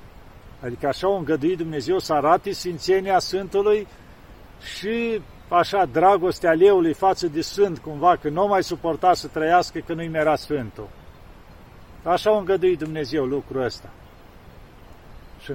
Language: Romanian